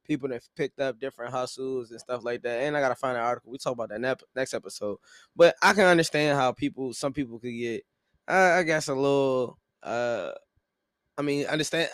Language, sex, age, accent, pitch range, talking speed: English, male, 20-39, American, 125-155 Hz, 205 wpm